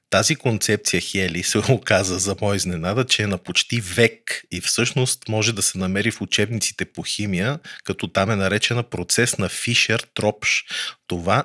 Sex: male